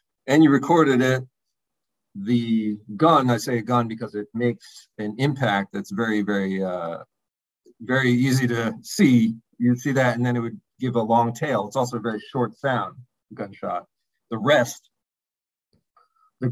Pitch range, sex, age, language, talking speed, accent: 105-125 Hz, male, 40-59, English, 160 wpm, American